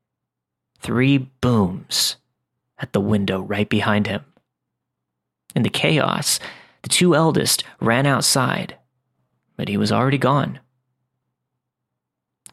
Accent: American